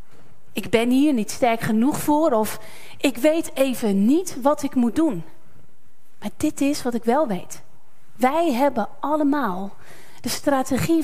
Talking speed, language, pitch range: 150 wpm, Dutch, 230-300 Hz